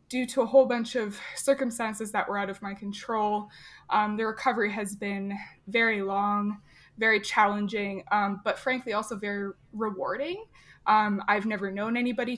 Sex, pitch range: female, 200-240 Hz